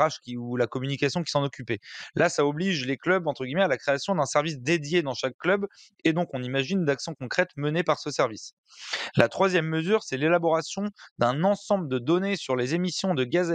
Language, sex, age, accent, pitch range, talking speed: French, male, 30-49, French, 130-175 Hz, 215 wpm